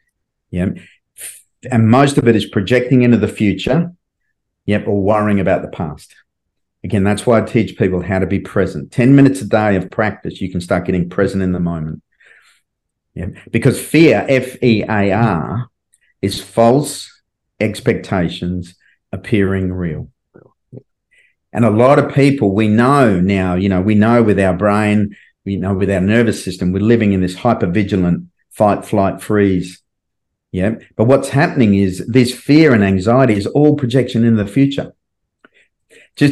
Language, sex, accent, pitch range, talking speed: English, male, Australian, 95-120 Hz, 165 wpm